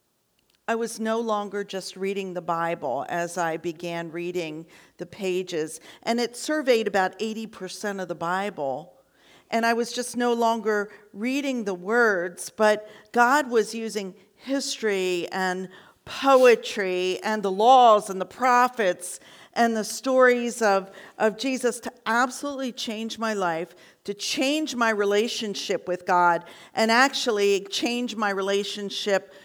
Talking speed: 135 wpm